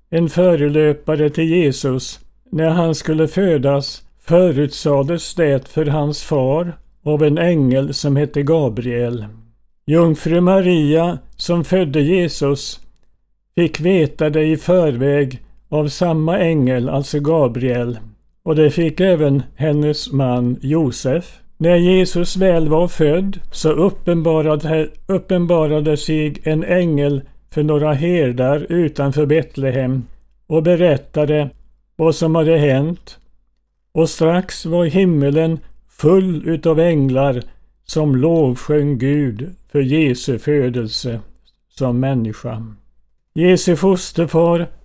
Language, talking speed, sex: Swedish, 105 wpm, male